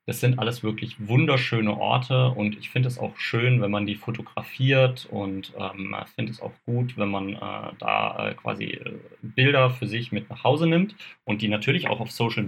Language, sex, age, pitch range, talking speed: German, male, 30-49, 105-125 Hz, 195 wpm